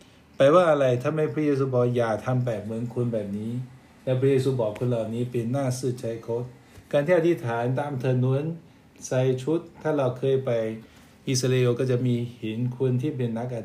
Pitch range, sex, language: 115-135 Hz, male, Thai